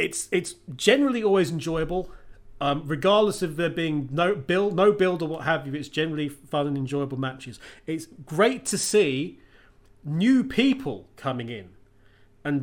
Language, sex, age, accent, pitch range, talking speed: English, male, 30-49, British, 140-180 Hz, 155 wpm